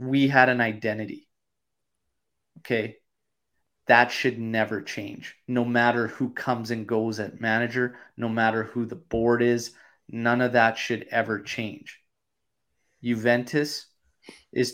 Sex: male